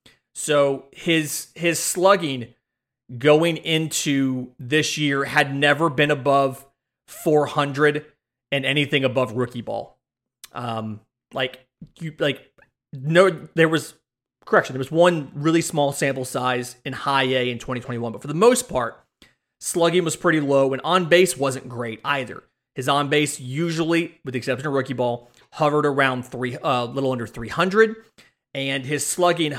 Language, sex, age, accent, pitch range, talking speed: English, male, 30-49, American, 130-155 Hz, 160 wpm